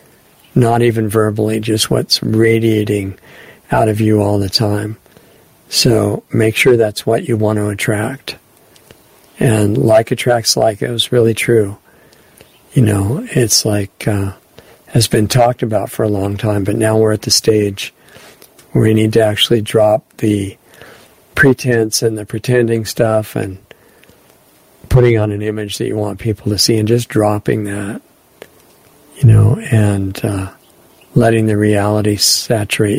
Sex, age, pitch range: male, 50-69, 105-115 Hz